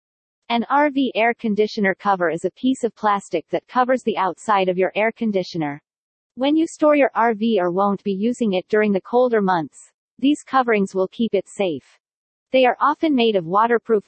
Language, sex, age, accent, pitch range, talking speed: English, female, 40-59, American, 190-240 Hz, 190 wpm